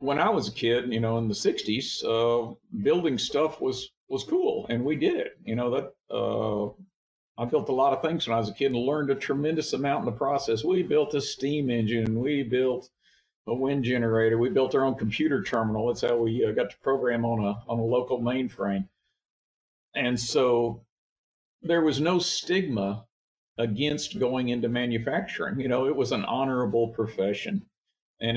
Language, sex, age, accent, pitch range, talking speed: English, male, 50-69, American, 115-140 Hz, 190 wpm